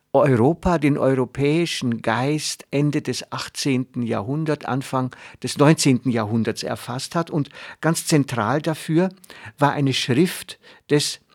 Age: 60-79